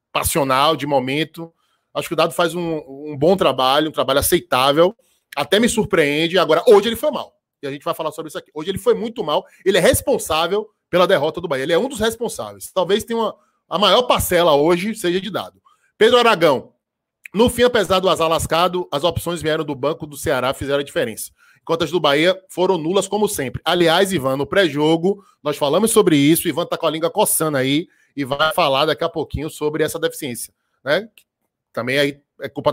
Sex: male